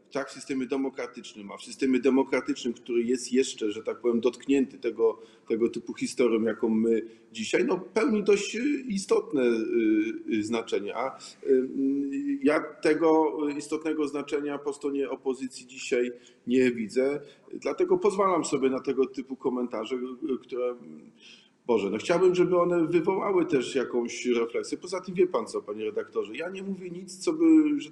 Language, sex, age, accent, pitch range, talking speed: Polish, male, 40-59, native, 115-160 Hz, 145 wpm